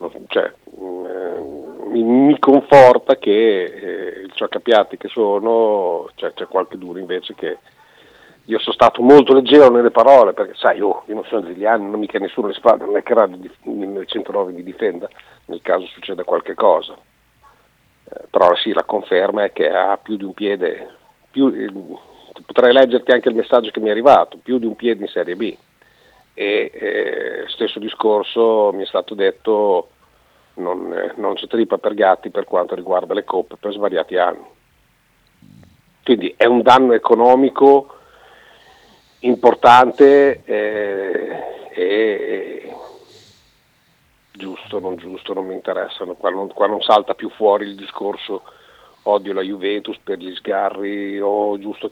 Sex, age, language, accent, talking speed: male, 50-69, Italian, native, 155 wpm